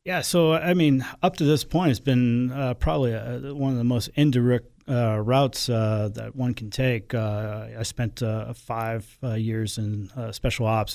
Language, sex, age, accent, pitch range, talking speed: English, male, 40-59, American, 110-125 Hz, 195 wpm